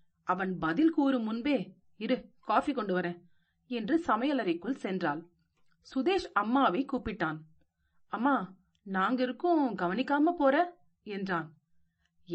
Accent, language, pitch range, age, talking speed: native, Tamil, 180-260 Hz, 40-59, 90 wpm